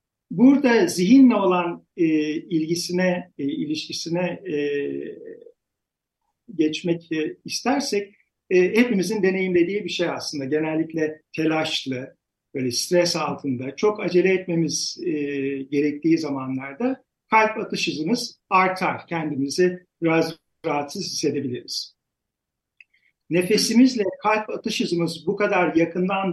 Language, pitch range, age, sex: Turkish, 160-215 Hz, 50-69, male